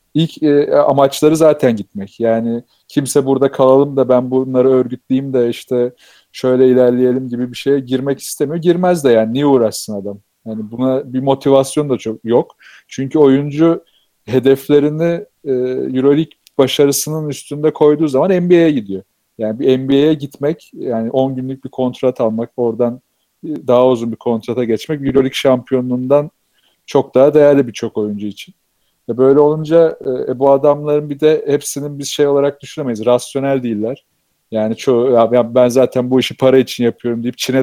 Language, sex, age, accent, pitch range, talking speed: Turkish, male, 40-59, native, 120-145 Hz, 145 wpm